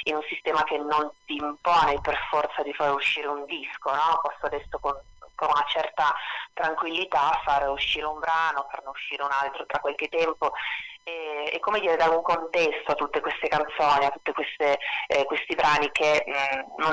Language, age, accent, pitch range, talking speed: Italian, 30-49, native, 145-155 Hz, 175 wpm